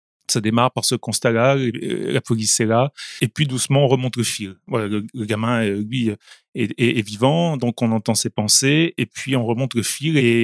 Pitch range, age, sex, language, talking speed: 115-145 Hz, 30-49, male, French, 215 wpm